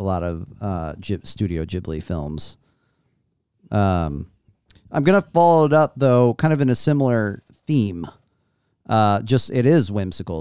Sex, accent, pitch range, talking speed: male, American, 100-140 Hz, 155 wpm